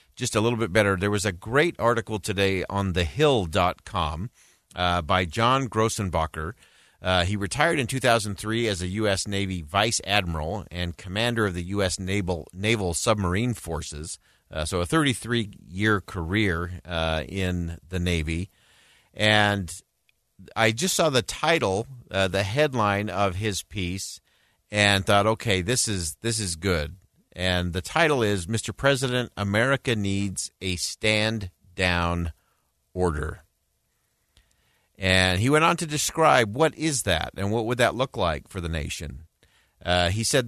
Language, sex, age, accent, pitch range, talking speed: English, male, 50-69, American, 90-120 Hz, 145 wpm